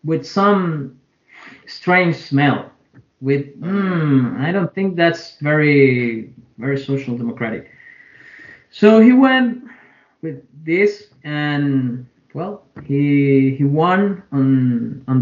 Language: English